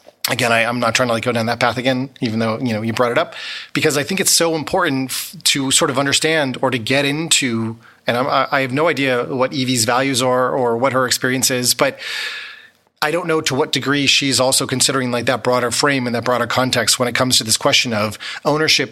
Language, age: English, 30-49